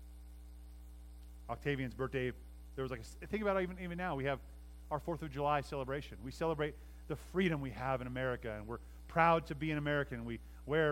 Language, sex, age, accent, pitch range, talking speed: English, male, 30-49, American, 125-170 Hz, 200 wpm